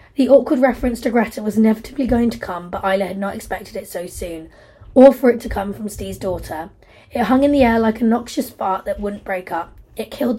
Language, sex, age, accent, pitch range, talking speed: English, female, 20-39, British, 190-255 Hz, 235 wpm